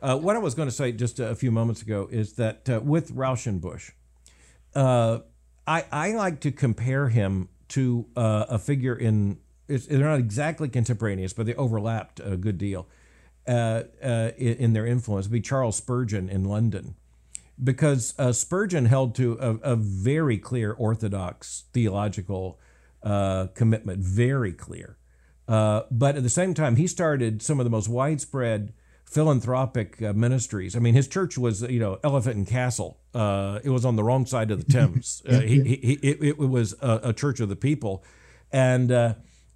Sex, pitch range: male, 105-135 Hz